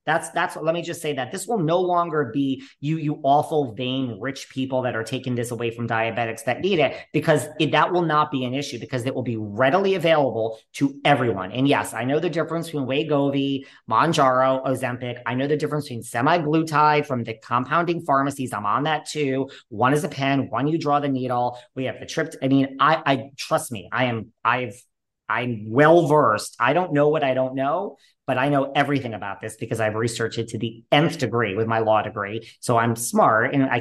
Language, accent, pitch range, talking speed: English, American, 120-150 Hz, 220 wpm